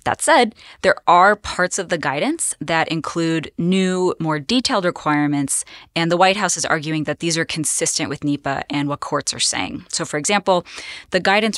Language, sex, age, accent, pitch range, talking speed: English, female, 20-39, American, 150-180 Hz, 185 wpm